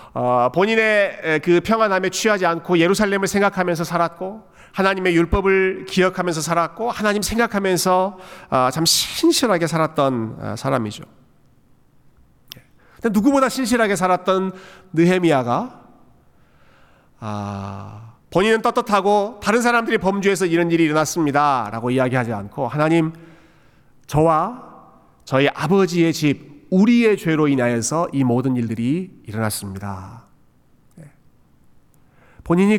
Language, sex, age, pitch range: Korean, male, 40-59, 135-205 Hz